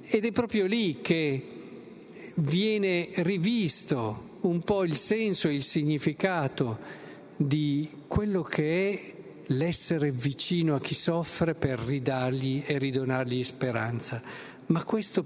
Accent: native